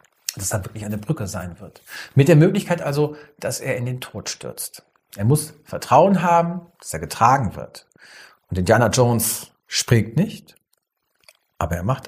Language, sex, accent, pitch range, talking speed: German, male, German, 115-160 Hz, 170 wpm